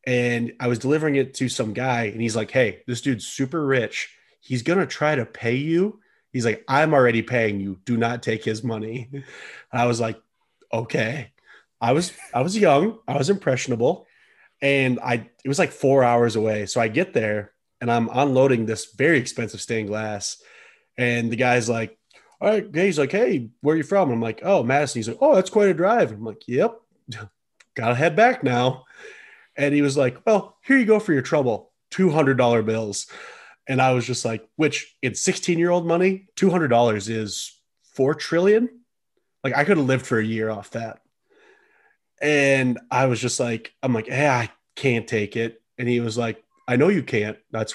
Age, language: 20-39, English